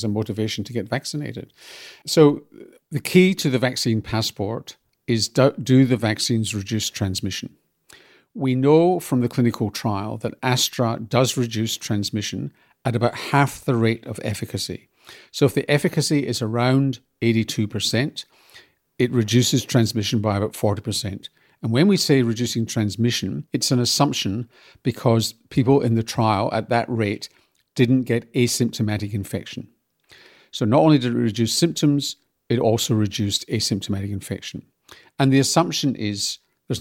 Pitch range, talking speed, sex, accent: 110-130 Hz, 145 wpm, male, British